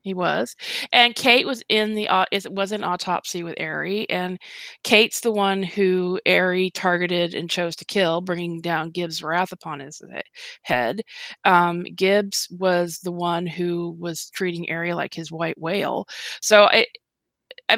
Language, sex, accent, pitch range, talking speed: English, female, American, 175-225 Hz, 160 wpm